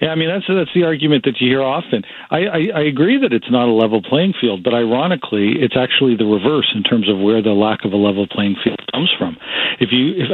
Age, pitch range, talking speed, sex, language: 50-69, 115-150 Hz, 255 wpm, male, English